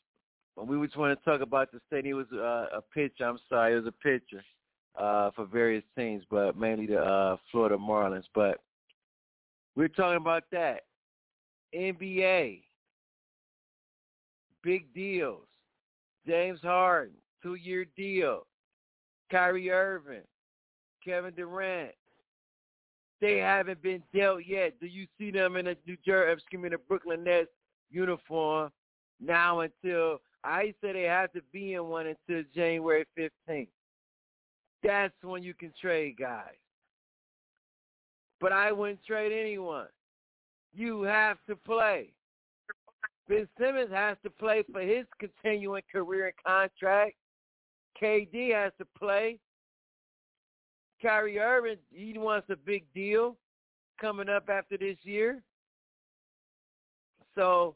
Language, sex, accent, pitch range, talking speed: English, male, American, 160-205 Hz, 125 wpm